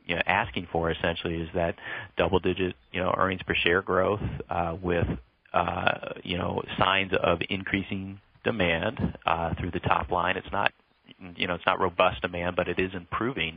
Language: English